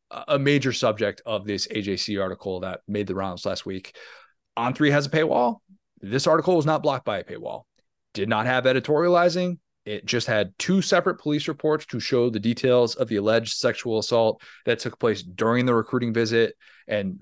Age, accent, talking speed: 30-49, American, 190 wpm